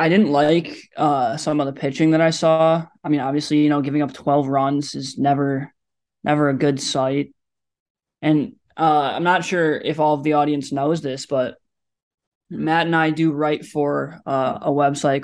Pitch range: 140-155 Hz